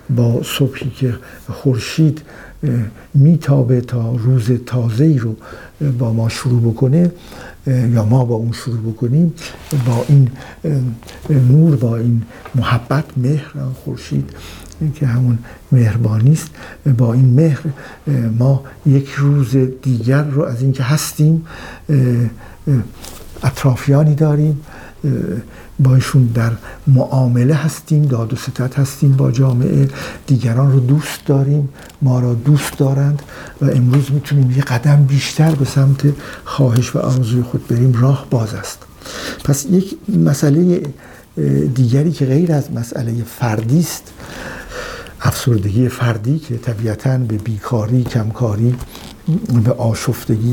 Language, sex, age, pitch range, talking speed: Persian, male, 60-79, 120-140 Hz, 115 wpm